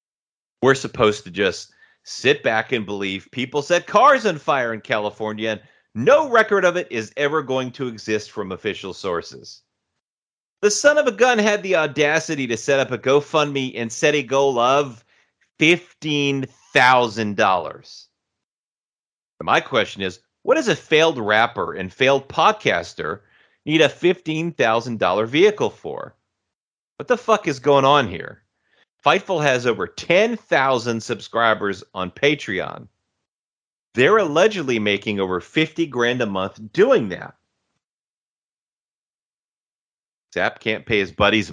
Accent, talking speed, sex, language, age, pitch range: American, 135 wpm, male, English, 30-49, 110-165 Hz